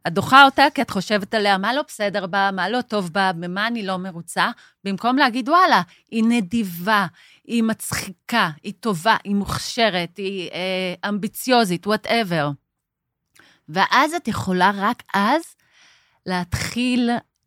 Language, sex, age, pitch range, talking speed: Hebrew, female, 30-49, 175-250 Hz, 135 wpm